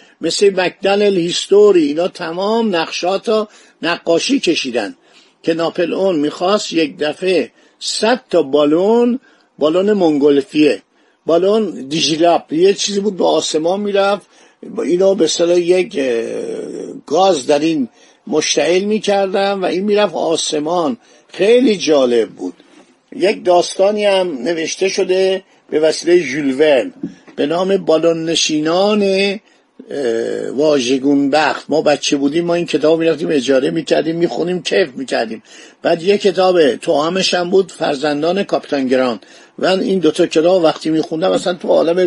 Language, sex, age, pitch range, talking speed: Persian, male, 50-69, 160-200 Hz, 125 wpm